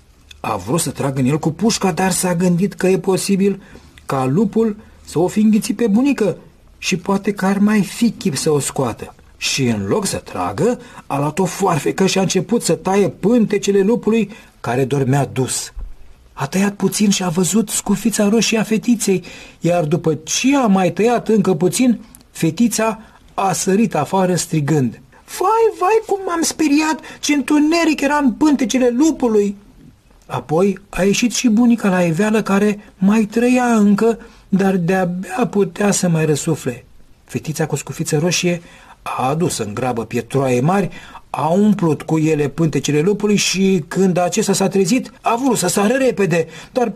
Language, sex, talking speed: Romanian, male, 165 wpm